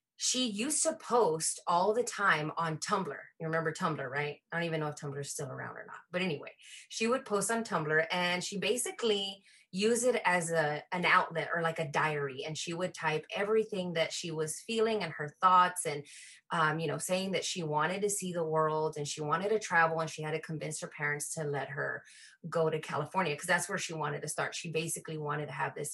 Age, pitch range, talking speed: 20-39, 160-210 Hz, 230 wpm